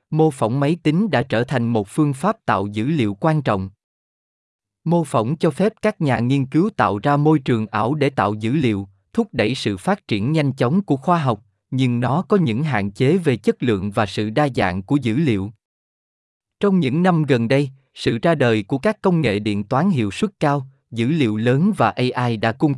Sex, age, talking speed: male, 20-39, 215 wpm